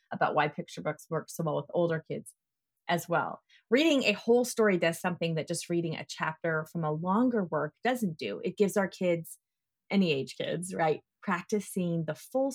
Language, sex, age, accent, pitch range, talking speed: English, female, 30-49, American, 165-220 Hz, 190 wpm